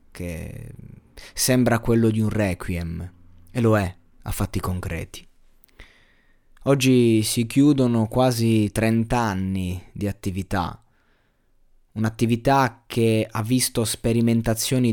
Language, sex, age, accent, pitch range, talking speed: Italian, male, 20-39, native, 95-115 Hz, 100 wpm